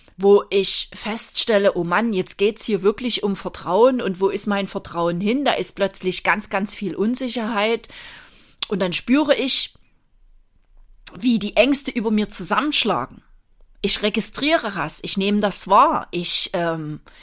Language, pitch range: German, 185-265 Hz